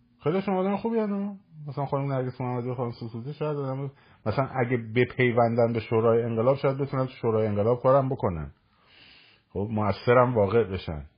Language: Persian